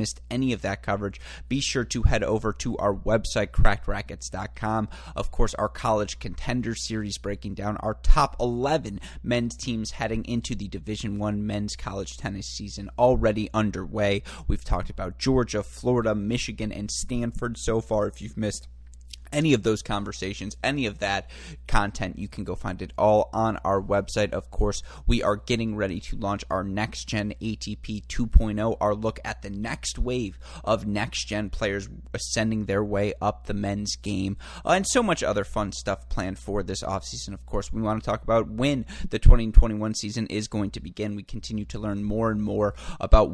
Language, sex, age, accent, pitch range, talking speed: English, male, 30-49, American, 100-110 Hz, 180 wpm